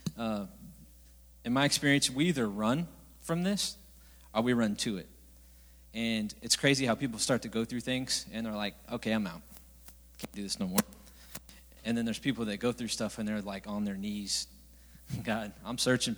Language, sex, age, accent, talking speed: English, male, 20-39, American, 195 wpm